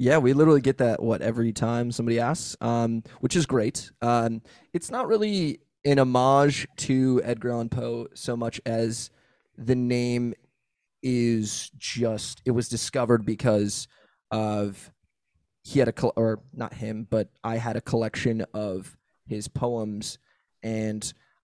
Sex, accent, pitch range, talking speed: male, American, 110-120 Hz, 145 wpm